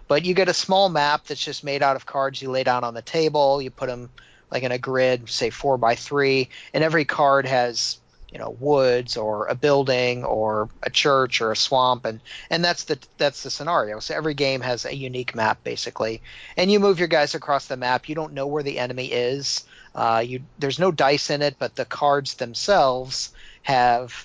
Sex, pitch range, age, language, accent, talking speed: male, 125-150 Hz, 40-59, English, American, 215 wpm